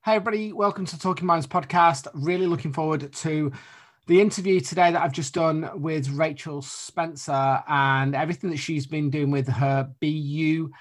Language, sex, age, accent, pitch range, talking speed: English, male, 20-39, British, 140-170 Hz, 165 wpm